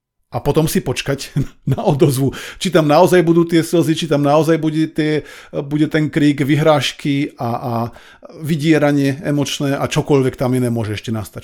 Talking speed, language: 170 wpm, Slovak